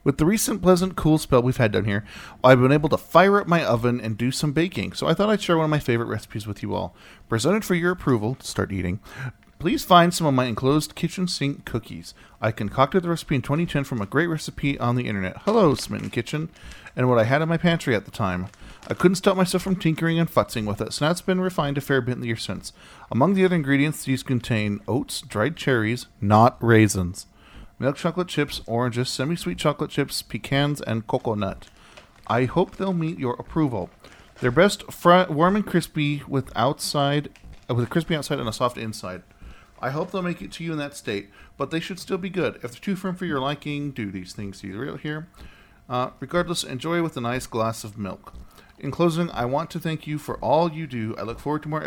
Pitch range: 115-165 Hz